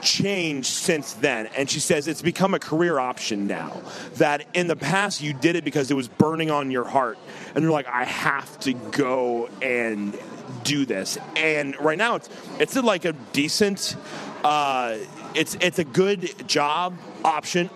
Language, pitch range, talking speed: English, 140-180 Hz, 170 wpm